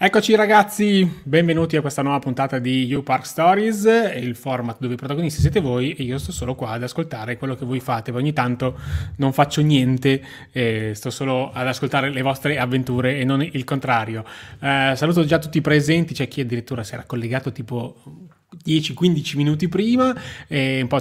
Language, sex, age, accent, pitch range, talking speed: Italian, male, 20-39, native, 125-145 Hz, 190 wpm